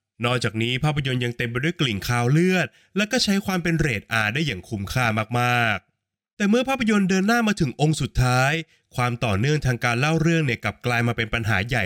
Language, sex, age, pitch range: Thai, male, 20-39, 120-170 Hz